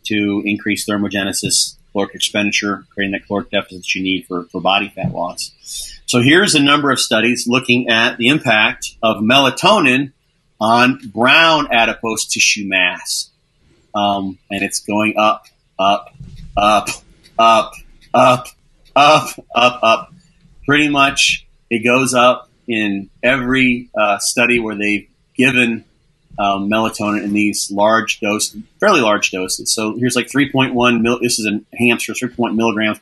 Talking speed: 140 wpm